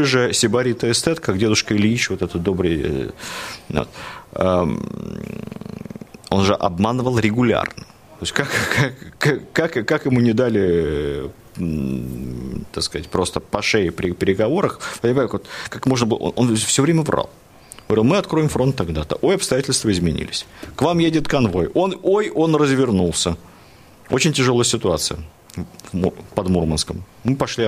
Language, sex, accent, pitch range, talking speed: Russian, male, native, 90-130 Hz, 135 wpm